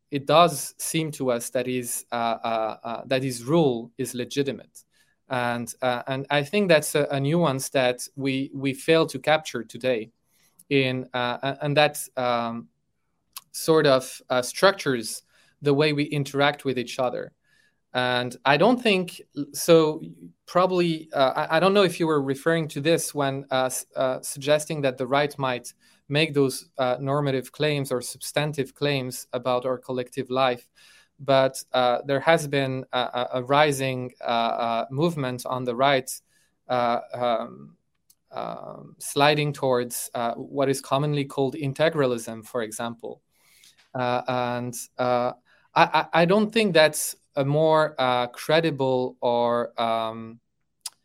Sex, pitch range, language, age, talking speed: male, 125-150 Hz, English, 20-39, 145 wpm